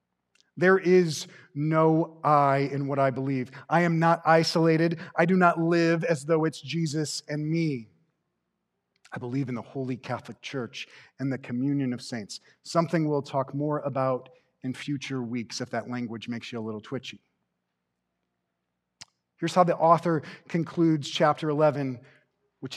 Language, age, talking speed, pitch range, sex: English, 30-49, 155 wpm, 125-160 Hz, male